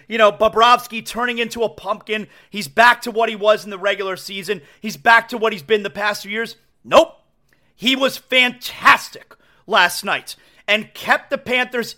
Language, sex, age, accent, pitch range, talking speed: English, male, 30-49, American, 205-255 Hz, 185 wpm